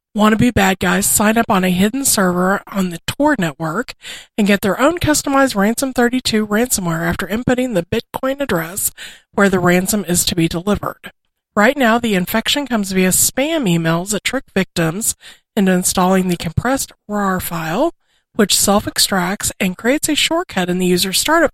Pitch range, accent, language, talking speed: 180-240 Hz, American, English, 165 wpm